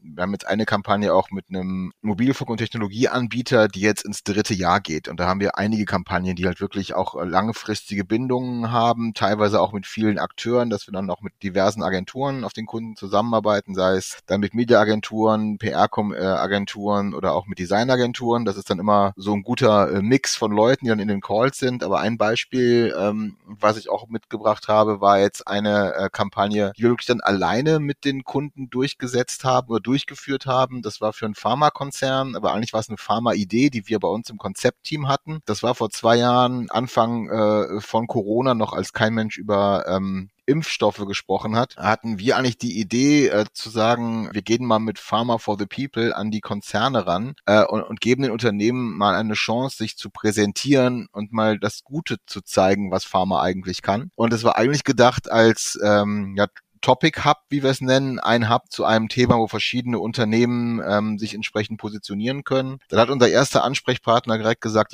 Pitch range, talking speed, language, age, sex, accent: 105-125 Hz, 195 wpm, German, 30-49, male, German